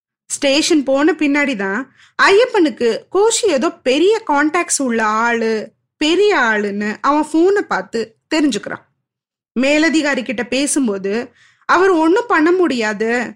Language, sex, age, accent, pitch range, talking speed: Tamil, female, 20-39, native, 245-355 Hz, 45 wpm